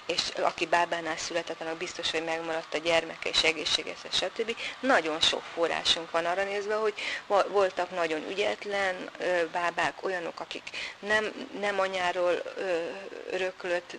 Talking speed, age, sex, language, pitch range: 125 wpm, 30-49, female, Hungarian, 170-200 Hz